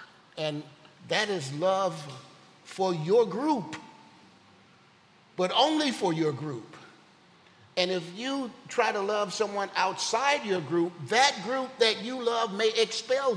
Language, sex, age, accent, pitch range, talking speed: English, male, 50-69, American, 140-185 Hz, 130 wpm